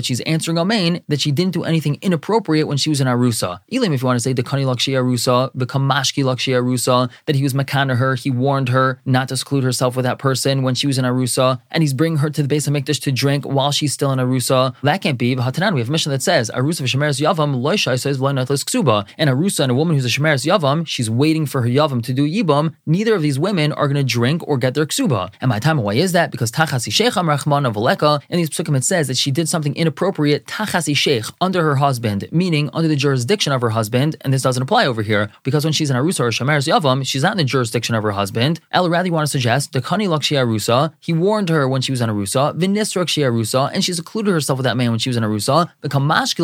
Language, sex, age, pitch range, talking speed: English, male, 20-39, 130-160 Hz, 235 wpm